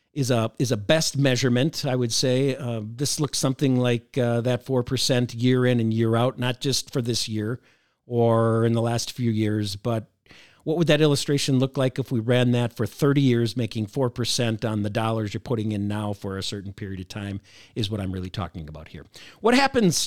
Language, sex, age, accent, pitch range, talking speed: English, male, 50-69, American, 110-130 Hz, 210 wpm